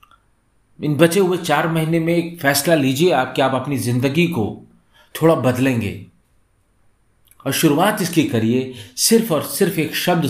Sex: male